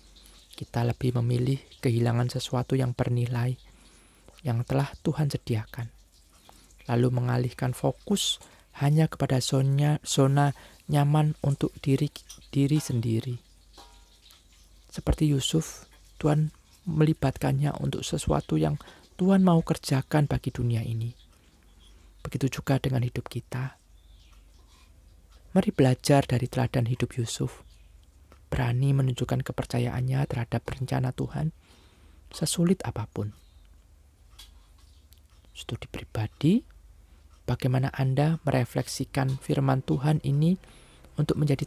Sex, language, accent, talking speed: male, Indonesian, native, 95 wpm